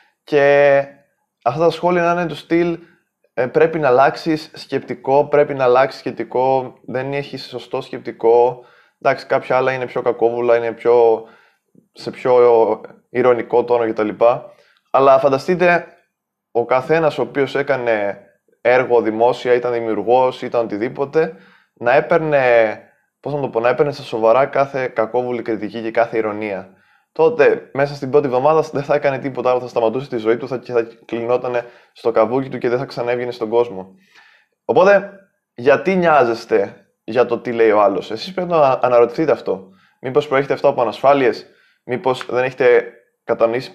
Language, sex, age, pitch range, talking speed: Greek, male, 20-39, 120-155 Hz, 160 wpm